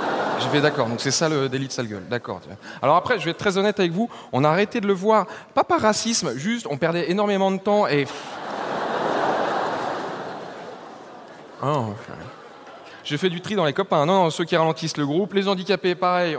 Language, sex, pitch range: French, male, 135-190 Hz